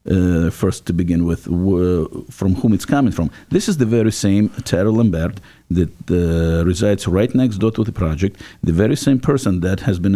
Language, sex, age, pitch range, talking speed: English, male, 50-69, 95-115 Hz, 200 wpm